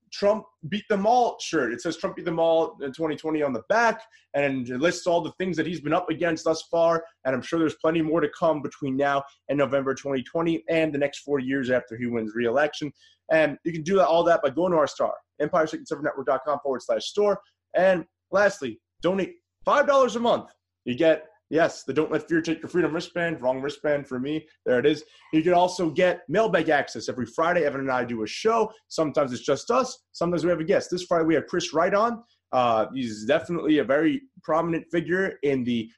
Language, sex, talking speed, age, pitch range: English, male, 220 wpm, 20-39, 145-190 Hz